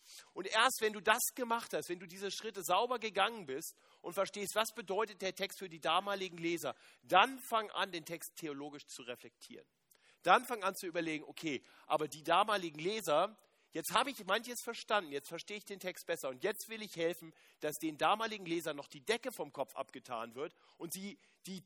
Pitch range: 145-210 Hz